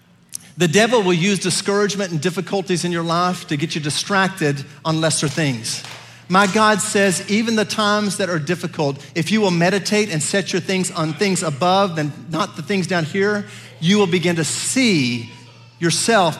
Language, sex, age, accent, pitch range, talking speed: English, male, 50-69, American, 170-235 Hz, 180 wpm